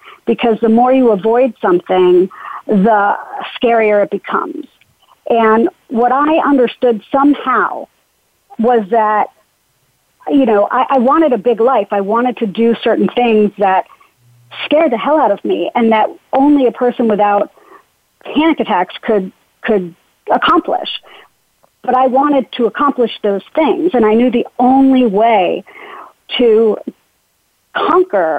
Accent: American